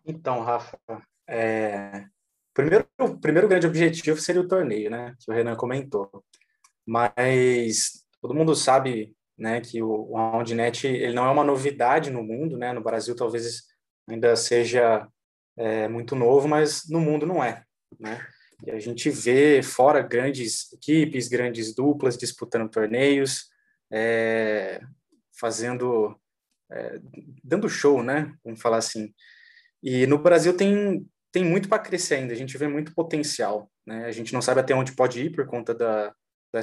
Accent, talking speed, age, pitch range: Brazilian, 150 wpm, 20-39, 115-145 Hz